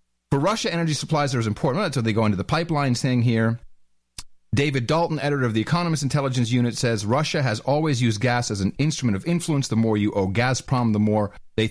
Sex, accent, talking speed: male, American, 220 wpm